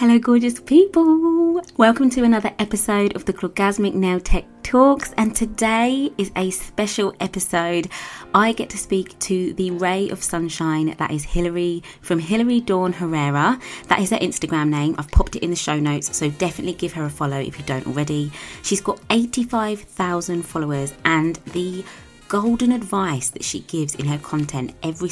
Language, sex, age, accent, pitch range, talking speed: English, female, 20-39, British, 150-200 Hz, 170 wpm